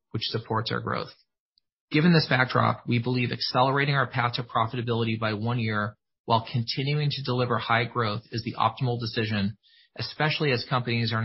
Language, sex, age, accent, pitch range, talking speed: English, male, 30-49, American, 115-130 Hz, 165 wpm